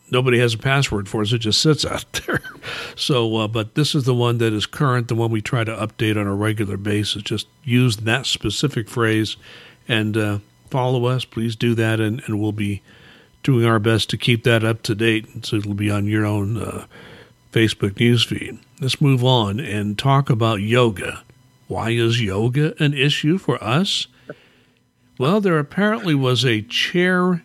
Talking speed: 185 wpm